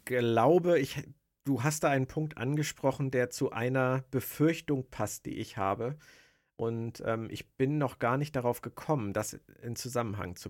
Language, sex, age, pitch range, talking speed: German, male, 50-69, 110-140 Hz, 170 wpm